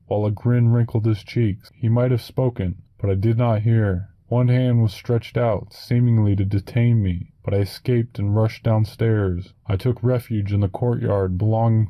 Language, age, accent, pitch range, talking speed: English, 20-39, American, 105-120 Hz, 185 wpm